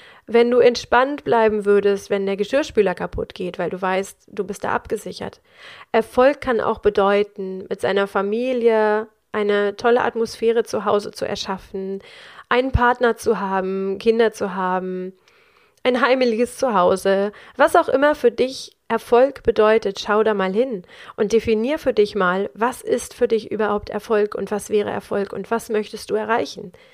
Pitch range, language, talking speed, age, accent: 200-250 Hz, German, 160 wpm, 30-49, German